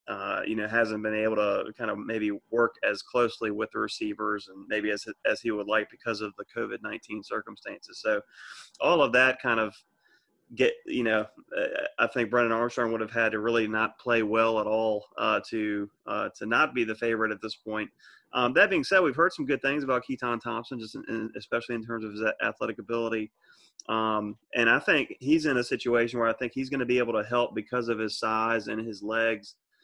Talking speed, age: 220 wpm, 30-49